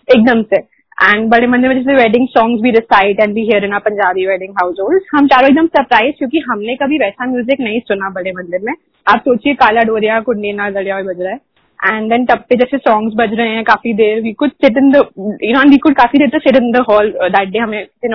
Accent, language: native, Hindi